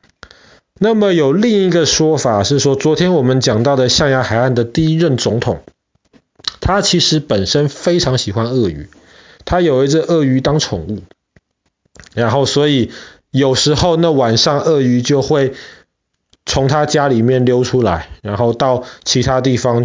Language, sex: Chinese, male